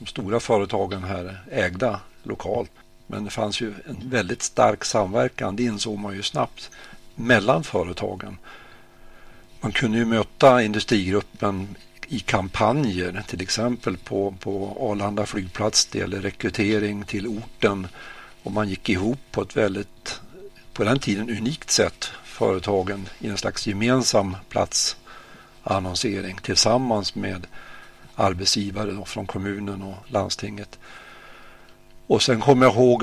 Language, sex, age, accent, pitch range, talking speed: Swedish, male, 60-79, native, 100-115 Hz, 125 wpm